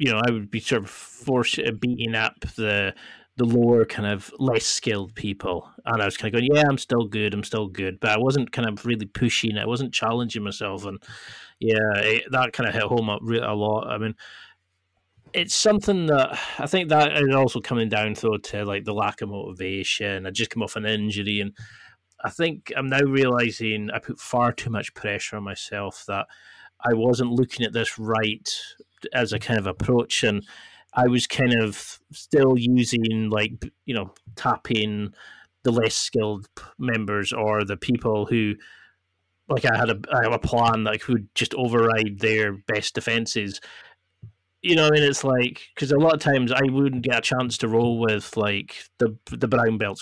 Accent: British